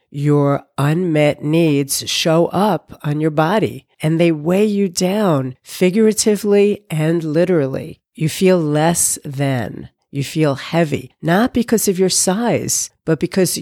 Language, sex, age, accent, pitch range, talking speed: English, female, 50-69, American, 145-180 Hz, 130 wpm